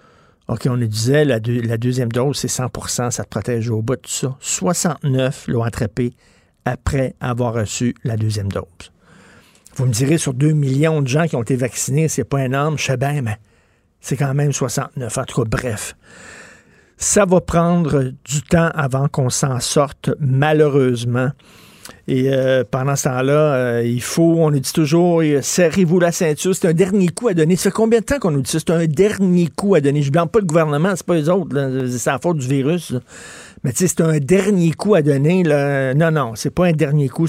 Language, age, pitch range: French, 50-69, 130-165 Hz